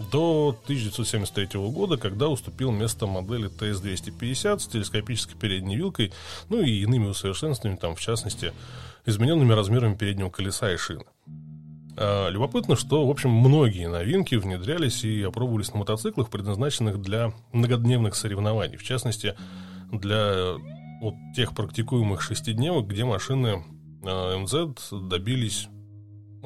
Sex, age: male, 20-39